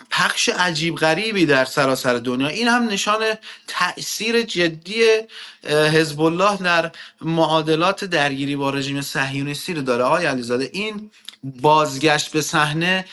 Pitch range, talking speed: 130-160 Hz, 125 wpm